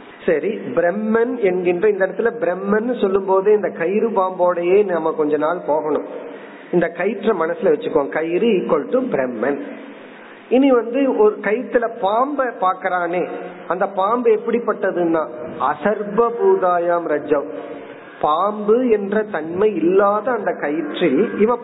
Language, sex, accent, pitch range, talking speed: Tamil, male, native, 160-230 Hz, 115 wpm